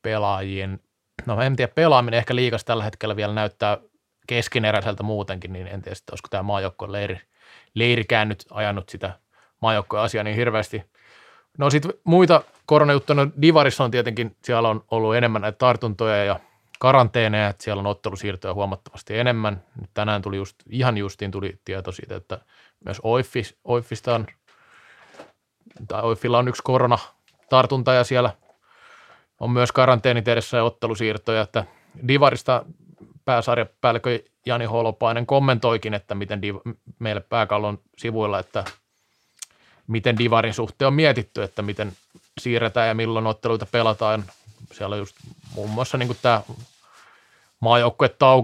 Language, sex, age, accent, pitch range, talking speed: Finnish, male, 20-39, native, 105-125 Hz, 130 wpm